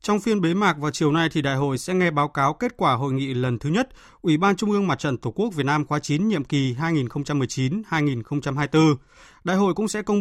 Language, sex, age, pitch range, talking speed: Vietnamese, male, 20-39, 135-175 Hz, 240 wpm